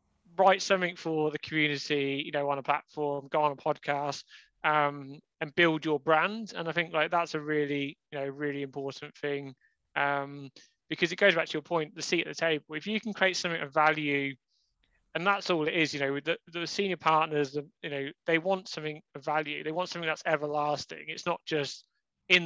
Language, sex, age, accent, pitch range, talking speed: English, male, 20-39, British, 145-165 Hz, 215 wpm